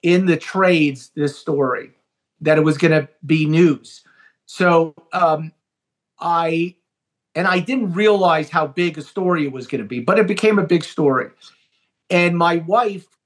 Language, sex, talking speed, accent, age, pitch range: English, male, 160 wpm, American, 40-59, 155-185 Hz